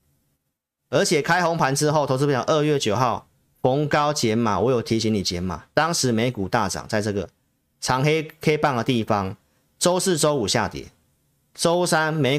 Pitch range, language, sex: 105-150 Hz, Chinese, male